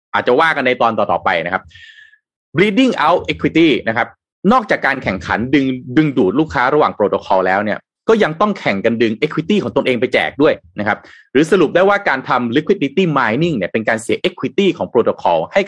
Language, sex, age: Thai, male, 30-49